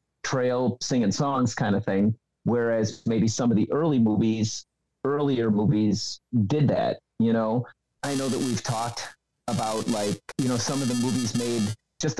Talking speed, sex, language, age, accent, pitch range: 165 wpm, male, English, 40-59, American, 110-130 Hz